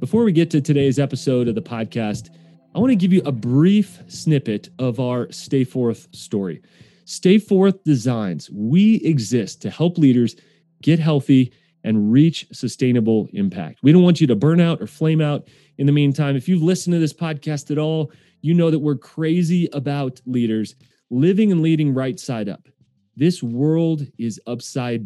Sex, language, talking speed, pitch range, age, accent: male, English, 175 wpm, 125-160 Hz, 30-49, American